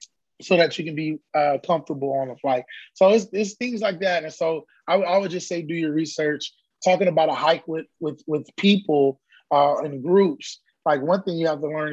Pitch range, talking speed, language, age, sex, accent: 145-180 Hz, 225 wpm, English, 20-39, male, American